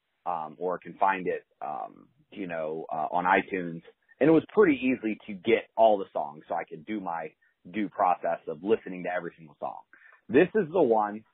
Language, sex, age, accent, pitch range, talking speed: English, male, 30-49, American, 95-150 Hz, 205 wpm